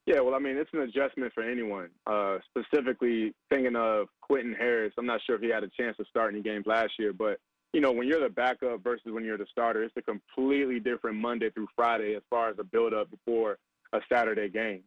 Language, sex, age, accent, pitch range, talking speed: English, male, 20-39, American, 110-125 Hz, 230 wpm